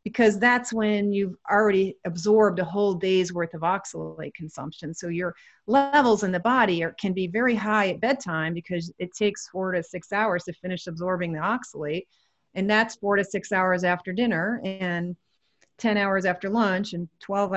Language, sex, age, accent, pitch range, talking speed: English, female, 40-59, American, 175-215 Hz, 180 wpm